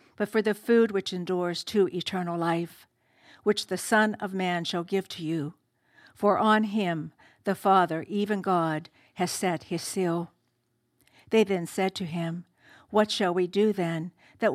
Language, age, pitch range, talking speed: English, 60-79, 170-205 Hz, 165 wpm